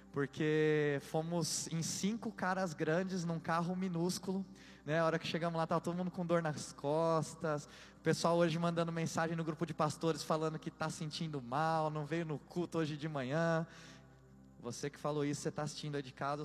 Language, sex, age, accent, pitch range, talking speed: Portuguese, male, 20-39, Brazilian, 160-215 Hz, 195 wpm